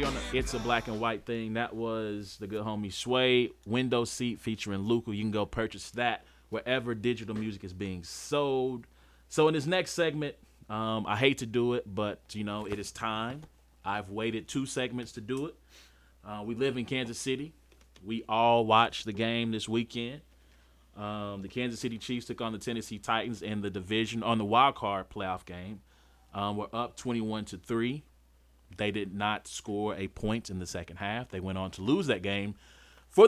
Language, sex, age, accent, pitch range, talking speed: English, male, 30-49, American, 95-120 Hz, 195 wpm